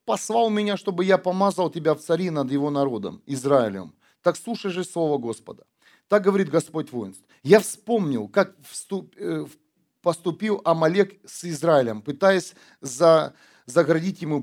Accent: native